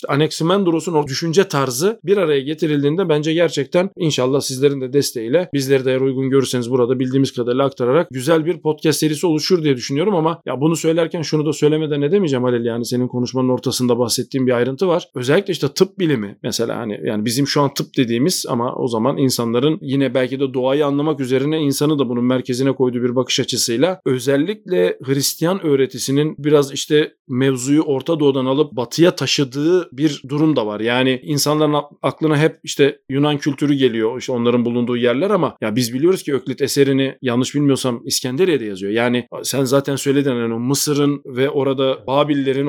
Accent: native